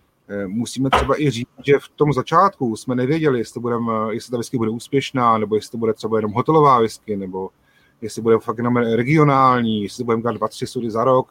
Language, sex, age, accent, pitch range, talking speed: Czech, male, 30-49, native, 115-145 Hz, 200 wpm